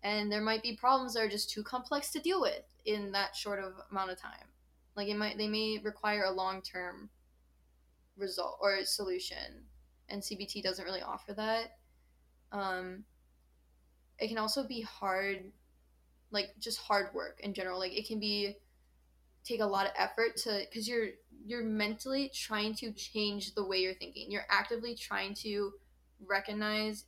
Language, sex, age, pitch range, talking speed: English, female, 10-29, 180-215 Hz, 170 wpm